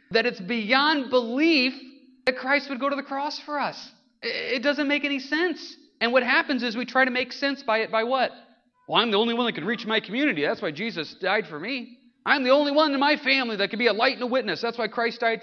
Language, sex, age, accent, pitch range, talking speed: English, male, 40-59, American, 175-260 Hz, 255 wpm